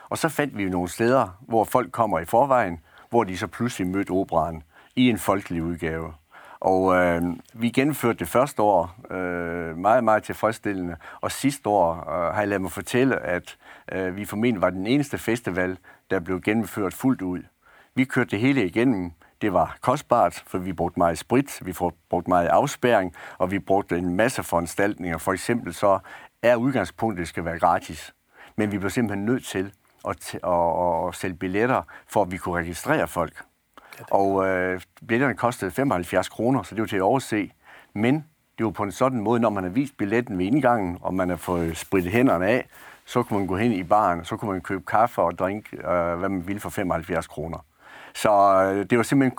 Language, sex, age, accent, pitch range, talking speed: Danish, male, 60-79, native, 90-115 Hz, 195 wpm